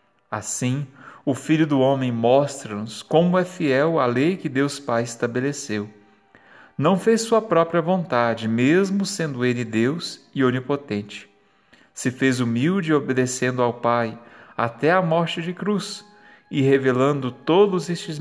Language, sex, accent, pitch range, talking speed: Portuguese, male, Brazilian, 115-155 Hz, 135 wpm